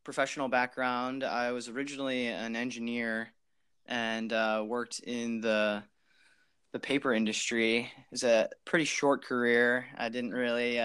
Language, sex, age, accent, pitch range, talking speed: English, male, 20-39, American, 115-135 Hz, 135 wpm